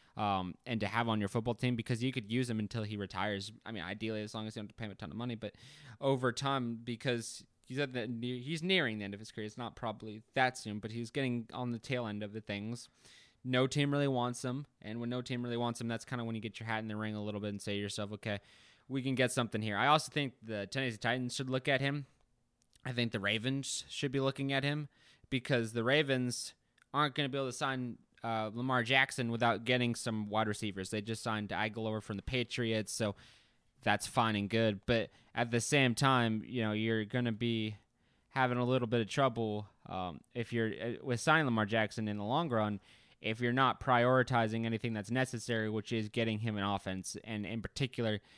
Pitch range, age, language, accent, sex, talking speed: 110-125 Hz, 20-39, English, American, male, 235 wpm